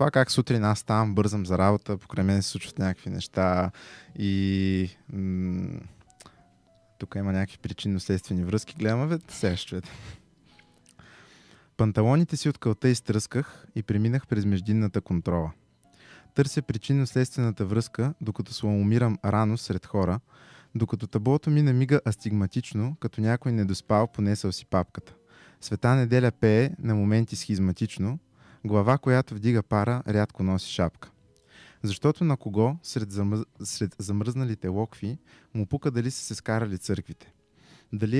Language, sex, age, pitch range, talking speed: Bulgarian, male, 20-39, 100-125 Hz, 125 wpm